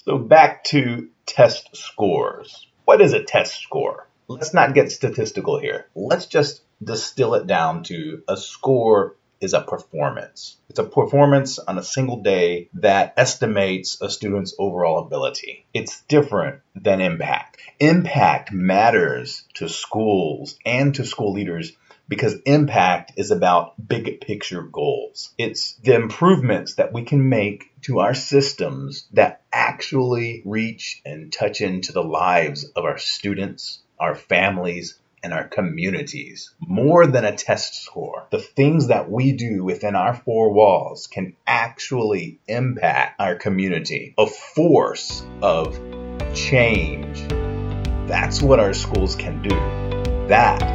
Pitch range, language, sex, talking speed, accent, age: 90-140 Hz, English, male, 135 wpm, American, 30-49